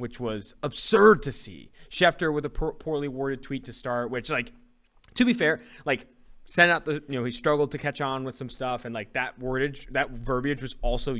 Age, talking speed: 20-39, 220 wpm